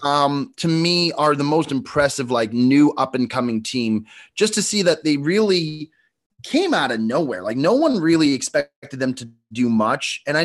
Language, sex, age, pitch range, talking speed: English, male, 30-49, 130-185 Hz, 195 wpm